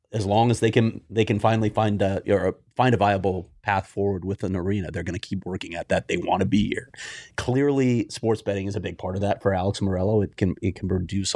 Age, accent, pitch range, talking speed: 30-49, American, 95-105 Hz, 255 wpm